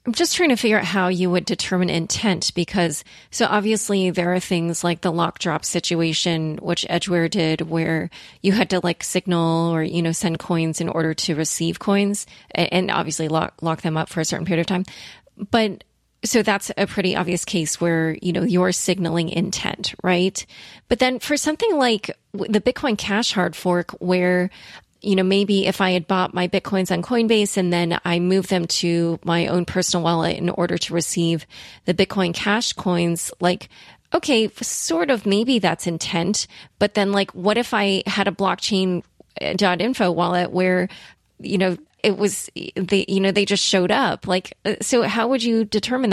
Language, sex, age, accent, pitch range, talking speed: English, female, 30-49, American, 175-205 Hz, 185 wpm